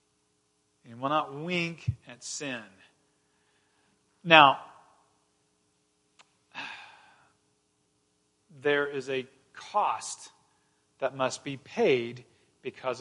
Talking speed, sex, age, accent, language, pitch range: 75 wpm, male, 40-59, American, English, 115-175 Hz